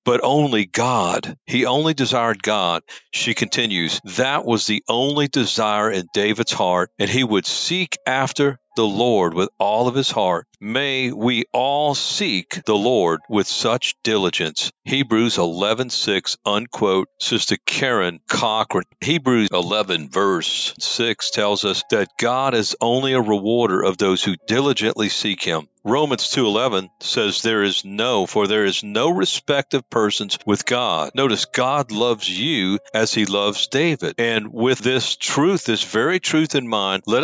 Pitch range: 105-135 Hz